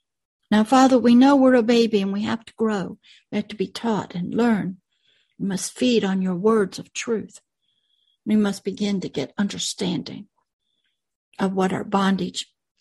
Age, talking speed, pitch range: 60-79, 175 wpm, 195-230 Hz